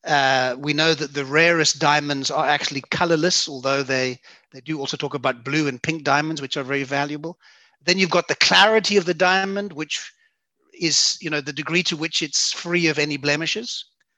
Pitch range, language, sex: 145-180 Hz, English, male